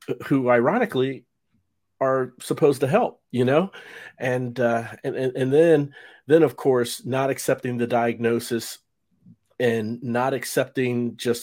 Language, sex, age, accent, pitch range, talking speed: English, male, 40-59, American, 105-120 Hz, 125 wpm